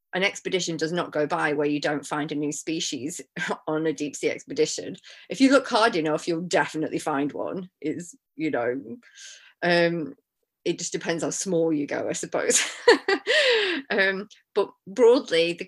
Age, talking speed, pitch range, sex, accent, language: 30-49, 170 wpm, 160-205 Hz, female, British, English